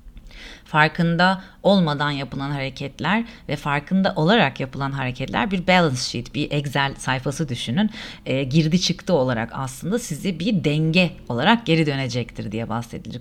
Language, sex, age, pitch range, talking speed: Turkish, female, 40-59, 135-185 Hz, 130 wpm